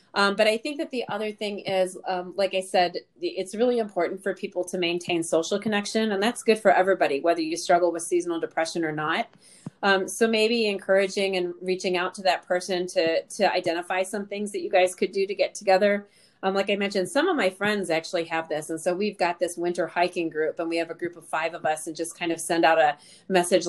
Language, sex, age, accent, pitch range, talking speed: English, female, 30-49, American, 175-200 Hz, 240 wpm